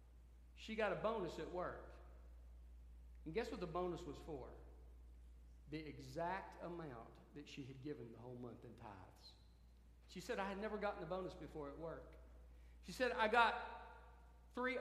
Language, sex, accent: English, male, American